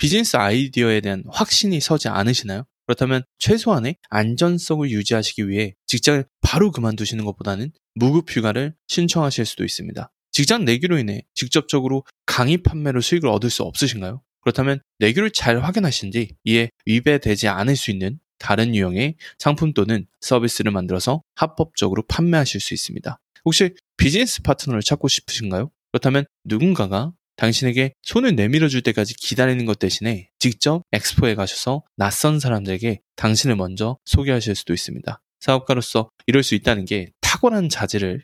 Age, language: 20-39, Korean